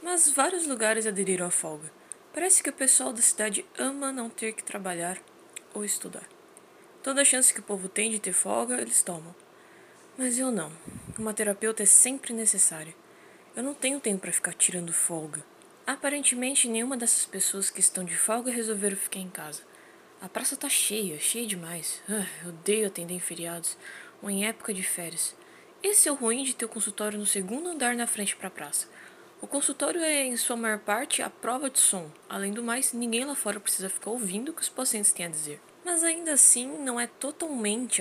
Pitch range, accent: 190-280 Hz, Brazilian